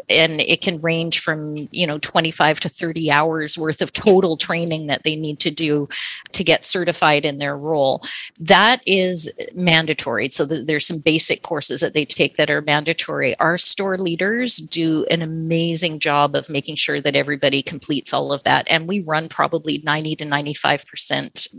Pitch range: 150-175 Hz